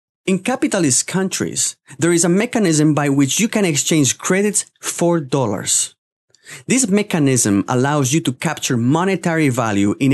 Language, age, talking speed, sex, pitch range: English, 30-49, 140 wpm, male, 130-180 Hz